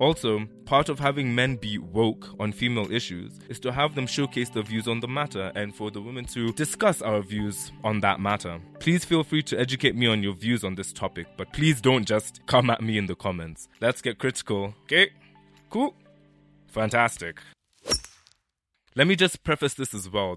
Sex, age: male, 20-39